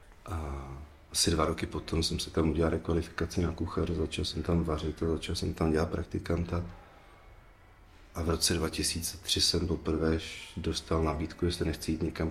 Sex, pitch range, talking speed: male, 80-90 Hz, 165 wpm